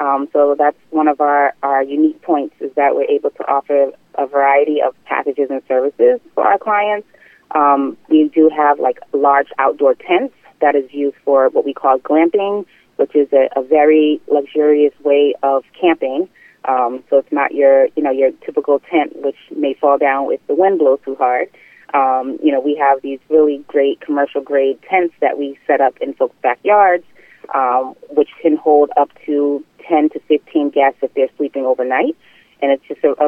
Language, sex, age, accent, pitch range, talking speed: English, female, 30-49, American, 140-190 Hz, 190 wpm